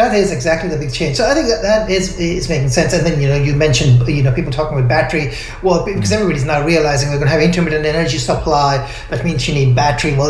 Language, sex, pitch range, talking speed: English, male, 125-155 Hz, 260 wpm